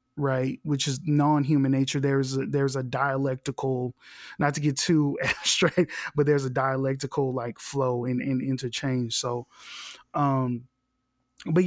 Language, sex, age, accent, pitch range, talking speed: English, male, 20-39, American, 130-150 Hz, 130 wpm